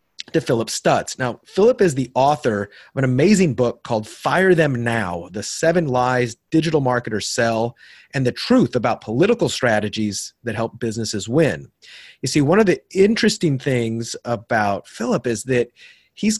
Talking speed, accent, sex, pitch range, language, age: 160 wpm, American, male, 110-145 Hz, English, 30-49